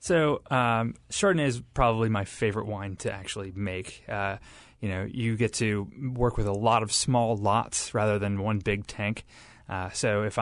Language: English